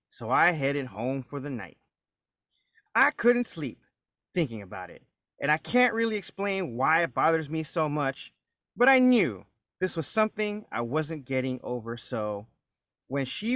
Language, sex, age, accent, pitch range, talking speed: English, male, 30-49, American, 130-185 Hz, 165 wpm